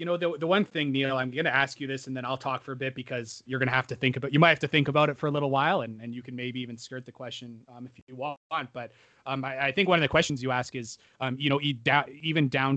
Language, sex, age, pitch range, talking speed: English, male, 30-49, 120-140 Hz, 325 wpm